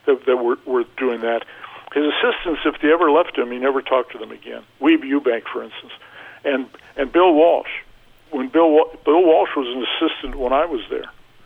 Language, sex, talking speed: English, male, 205 wpm